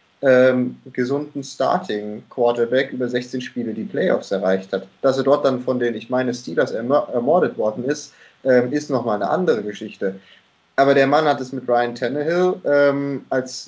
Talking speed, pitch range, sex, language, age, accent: 165 wpm, 120-140 Hz, male, German, 30-49, German